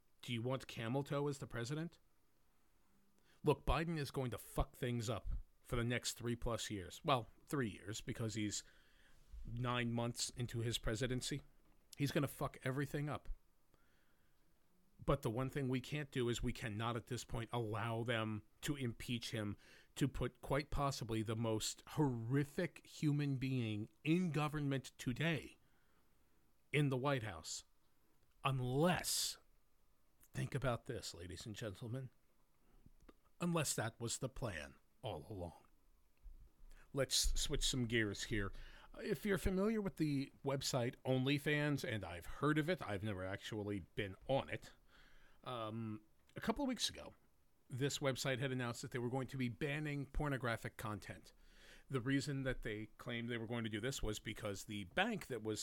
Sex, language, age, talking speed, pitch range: male, English, 40-59, 155 wpm, 110-140 Hz